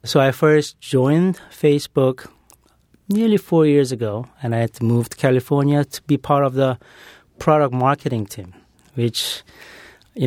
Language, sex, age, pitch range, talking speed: English, male, 30-49, 115-140 Hz, 150 wpm